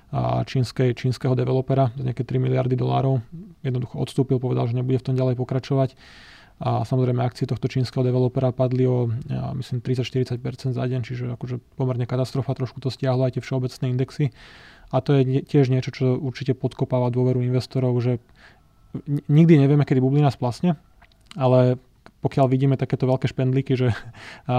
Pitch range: 125-130 Hz